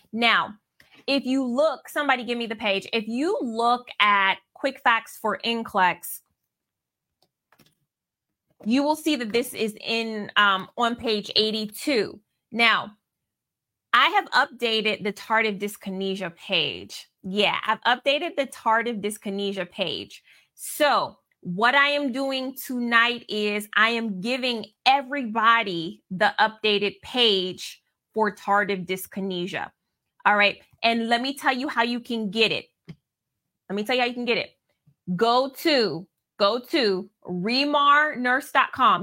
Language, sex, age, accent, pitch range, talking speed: English, female, 20-39, American, 210-255 Hz, 130 wpm